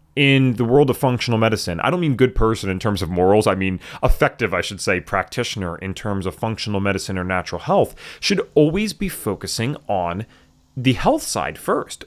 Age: 30-49